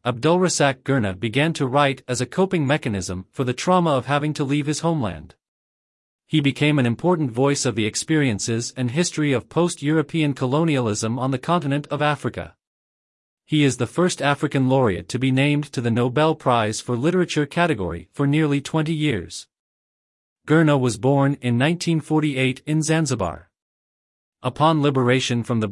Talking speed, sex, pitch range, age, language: 155 wpm, male, 120-155 Hz, 40-59, English